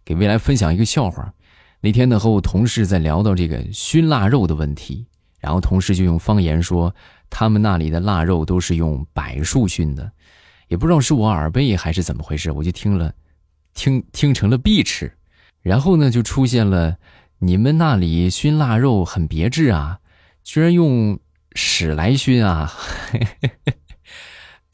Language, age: Chinese, 20-39